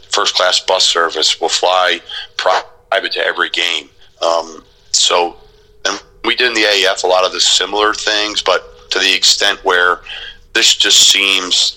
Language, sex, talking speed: English, male, 155 wpm